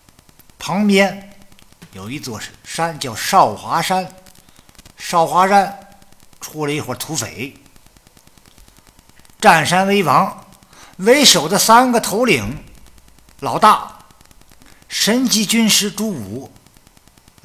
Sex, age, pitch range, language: male, 50-69, 135-210 Hz, Chinese